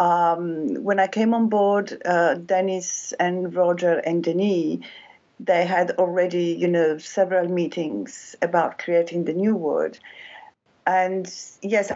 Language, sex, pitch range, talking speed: English, female, 175-200 Hz, 130 wpm